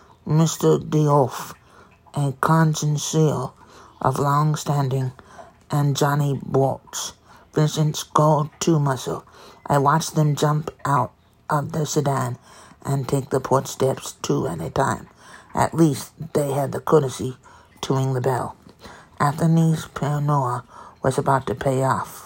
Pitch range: 135-155 Hz